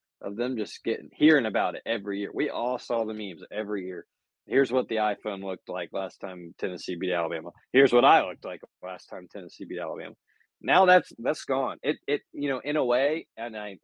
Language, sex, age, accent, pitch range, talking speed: English, male, 30-49, American, 100-120 Hz, 215 wpm